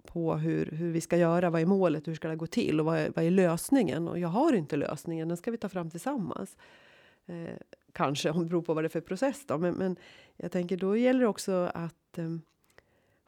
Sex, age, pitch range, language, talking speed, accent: female, 30-49, 180-220 Hz, English, 240 wpm, Swedish